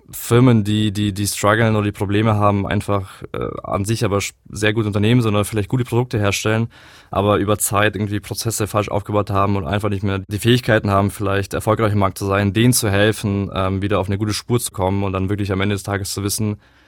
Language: German